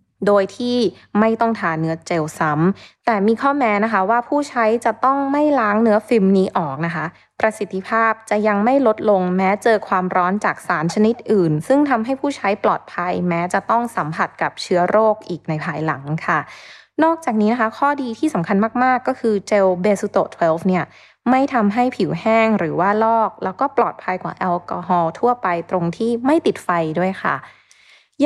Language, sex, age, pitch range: Thai, female, 20-39, 180-240 Hz